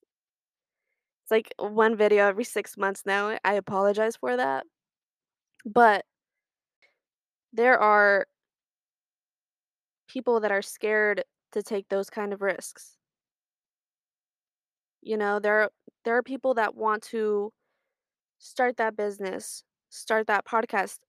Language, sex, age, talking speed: English, female, 20-39, 115 wpm